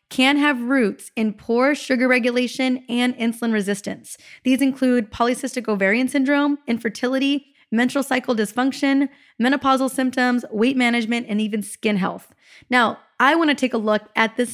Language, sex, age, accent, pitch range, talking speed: English, female, 20-39, American, 205-260 Hz, 150 wpm